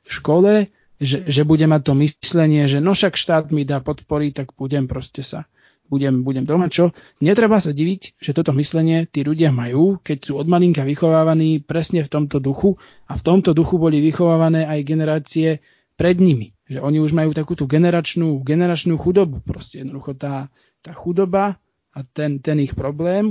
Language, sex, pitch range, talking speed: Slovak, male, 140-170 Hz, 170 wpm